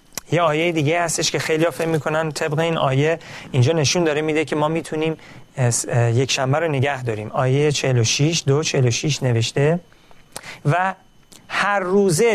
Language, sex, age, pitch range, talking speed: Persian, male, 40-59, 135-175 Hz, 160 wpm